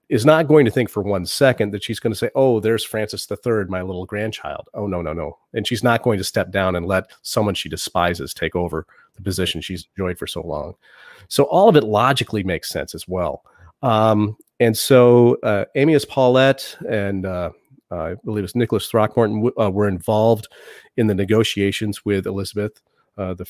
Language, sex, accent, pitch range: English, male, American, 95-120 Hz